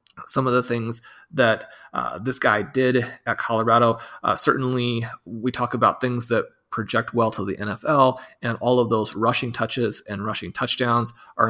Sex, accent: male, American